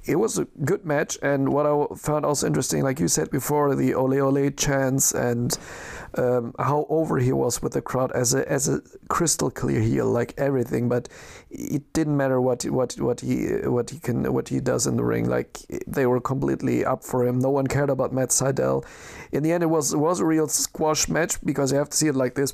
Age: 40-59